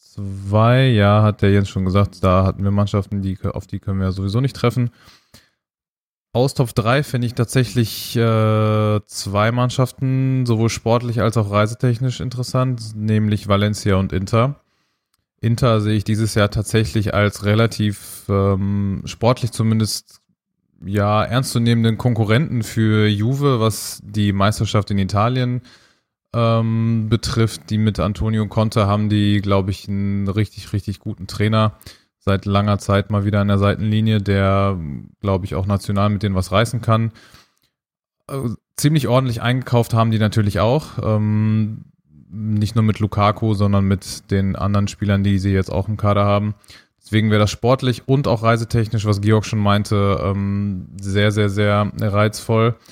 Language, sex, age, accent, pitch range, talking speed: German, male, 20-39, German, 100-115 Hz, 150 wpm